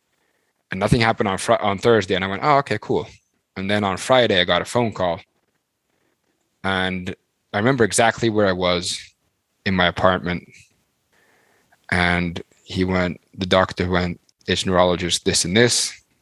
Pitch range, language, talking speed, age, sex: 90-105 Hz, English, 155 wpm, 20-39, male